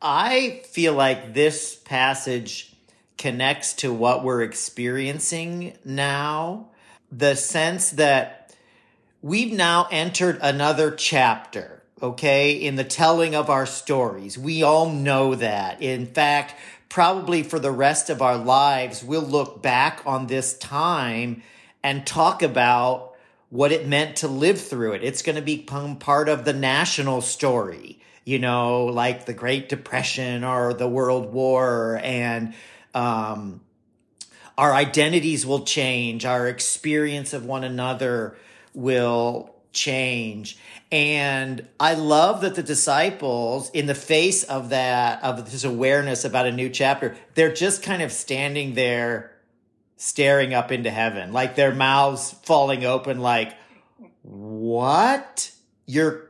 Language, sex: English, male